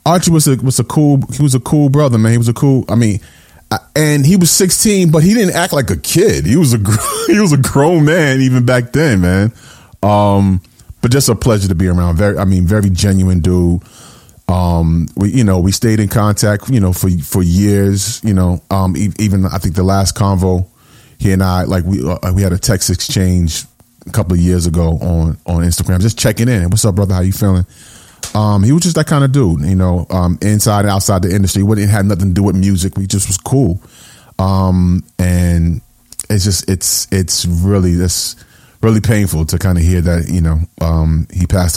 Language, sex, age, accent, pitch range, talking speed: English, male, 30-49, American, 90-115 Hz, 220 wpm